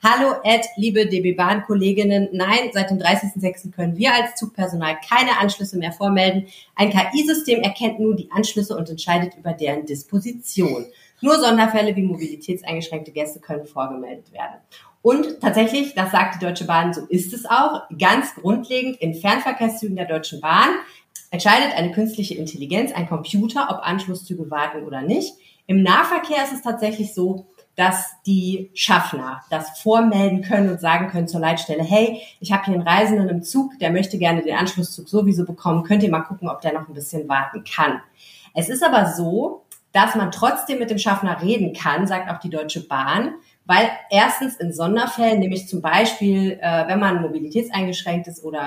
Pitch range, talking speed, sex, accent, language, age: 170-215 Hz, 170 wpm, female, German, German, 30-49